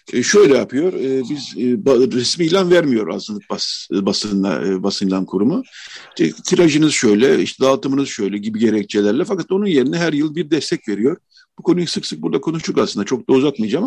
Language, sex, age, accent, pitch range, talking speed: Turkish, male, 50-69, native, 120-185 Hz, 180 wpm